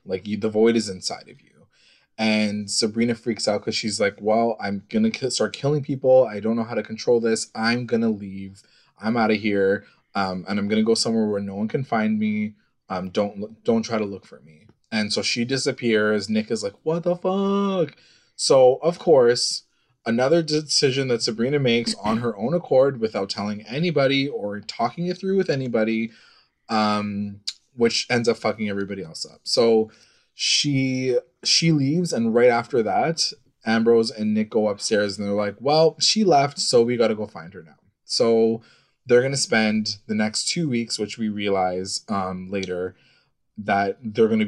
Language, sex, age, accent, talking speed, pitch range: English, male, 20-39, American, 190 wpm, 105-135 Hz